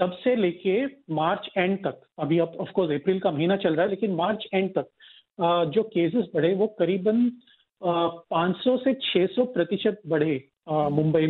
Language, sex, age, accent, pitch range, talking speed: Hindi, male, 40-59, native, 160-210 Hz, 160 wpm